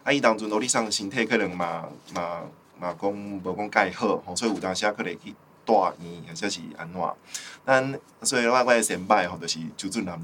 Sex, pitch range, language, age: male, 100-125 Hz, Chinese, 20-39